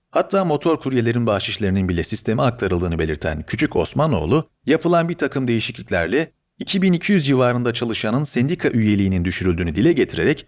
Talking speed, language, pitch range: 125 wpm, Turkish, 100-155 Hz